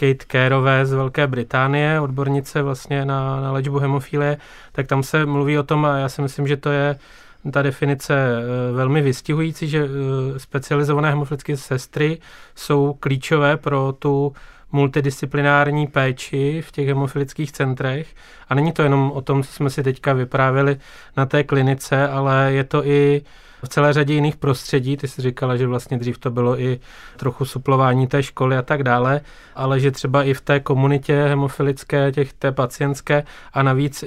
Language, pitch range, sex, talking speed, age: Czech, 135-145 Hz, male, 160 wpm, 20-39